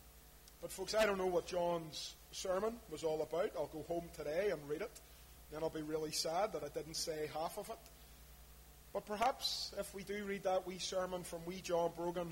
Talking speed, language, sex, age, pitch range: 210 wpm, English, male, 30-49, 155-190 Hz